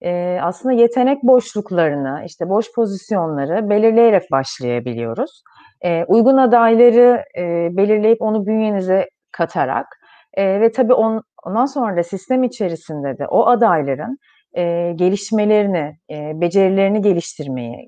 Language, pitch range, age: Turkish, 175-245 Hz, 30-49